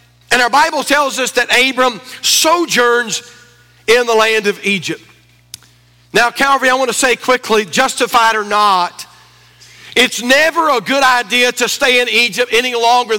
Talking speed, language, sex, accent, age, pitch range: 155 wpm, English, male, American, 50-69, 215-270 Hz